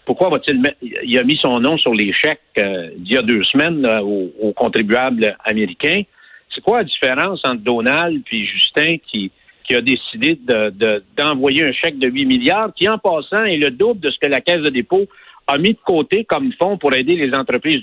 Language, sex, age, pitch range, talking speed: French, male, 60-79, 130-200 Hz, 215 wpm